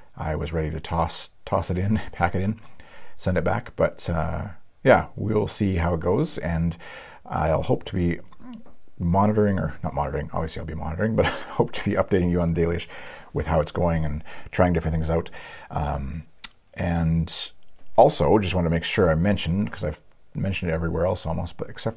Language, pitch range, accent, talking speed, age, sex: English, 80-100 Hz, American, 200 wpm, 40-59, male